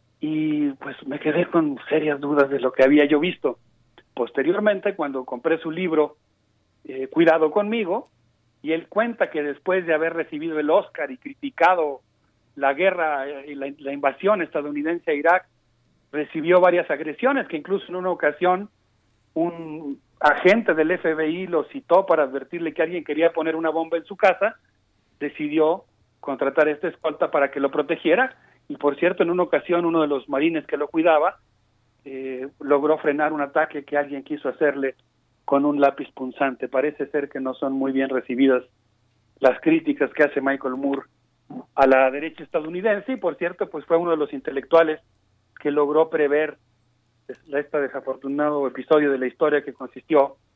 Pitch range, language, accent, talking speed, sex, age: 135-170 Hz, Spanish, Mexican, 165 wpm, male, 40-59